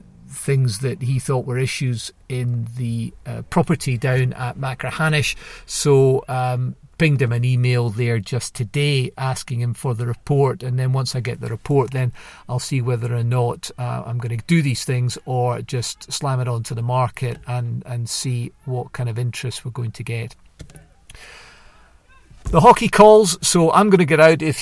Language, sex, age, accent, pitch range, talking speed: English, male, 40-59, British, 125-150 Hz, 185 wpm